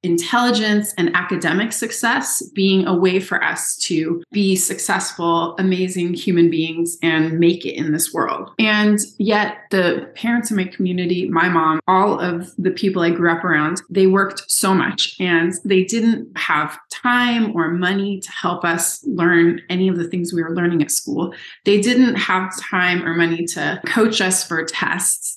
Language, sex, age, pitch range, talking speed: English, female, 20-39, 170-210 Hz, 175 wpm